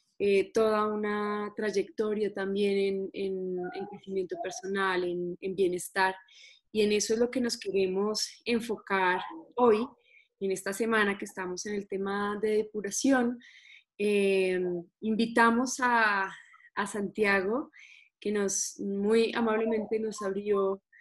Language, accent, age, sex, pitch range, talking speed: Spanish, Colombian, 20-39, female, 195-235 Hz, 120 wpm